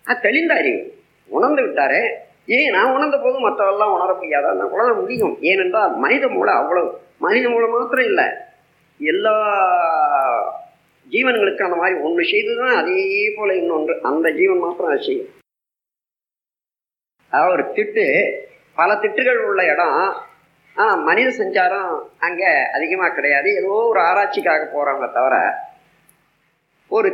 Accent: native